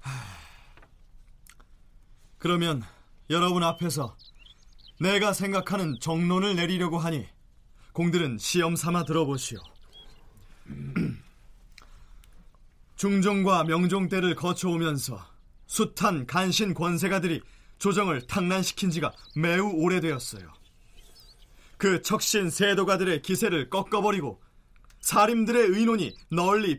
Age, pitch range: 30-49, 140-200 Hz